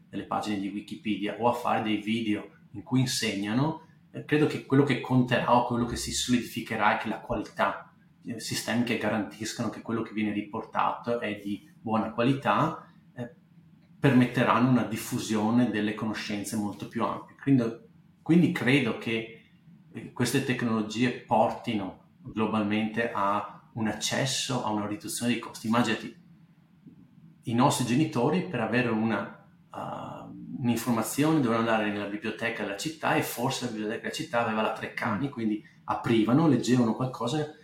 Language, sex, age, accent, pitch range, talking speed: Italian, male, 30-49, native, 110-155 Hz, 145 wpm